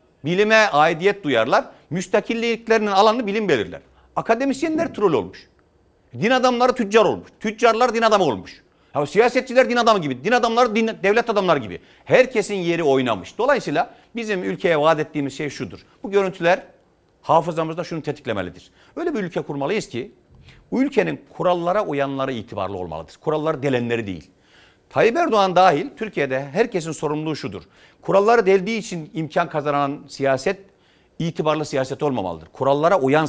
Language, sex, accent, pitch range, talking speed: Turkish, male, native, 135-205 Hz, 135 wpm